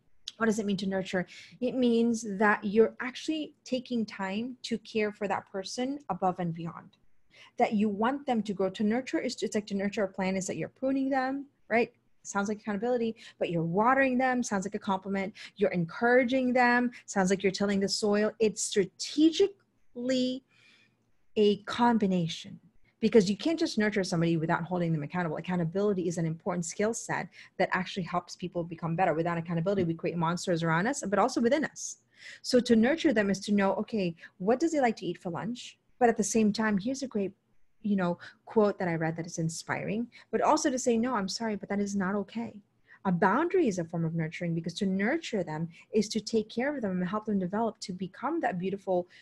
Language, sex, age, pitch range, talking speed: English, female, 30-49, 185-235 Hz, 205 wpm